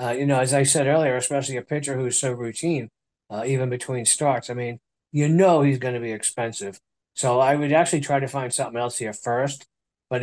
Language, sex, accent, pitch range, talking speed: English, male, American, 125-155 Hz, 225 wpm